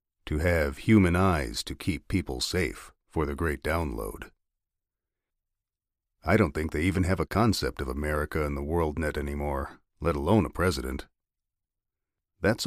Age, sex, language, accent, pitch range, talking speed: 40-59, male, English, American, 75-100 Hz, 150 wpm